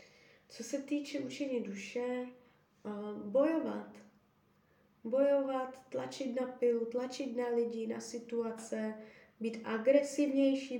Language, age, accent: Czech, 20-39, native